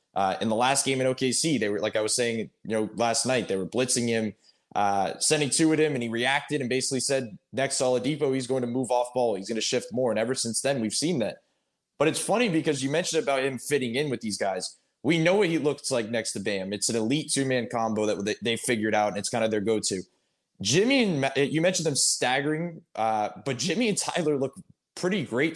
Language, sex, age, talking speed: English, male, 20-39, 250 wpm